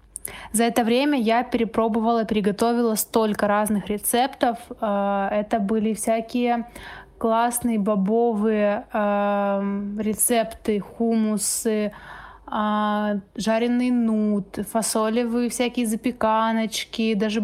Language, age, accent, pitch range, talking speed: Russian, 20-39, native, 210-235 Hz, 75 wpm